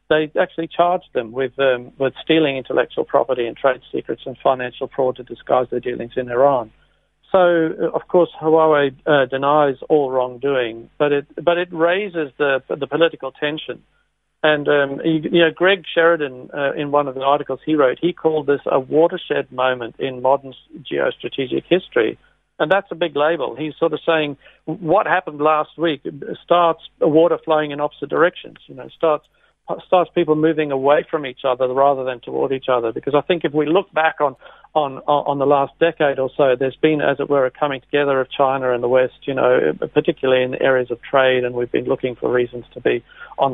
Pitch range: 130-160 Hz